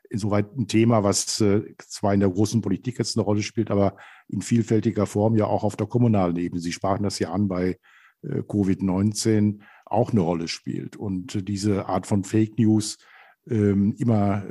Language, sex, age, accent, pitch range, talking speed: German, male, 50-69, German, 100-115 Hz, 170 wpm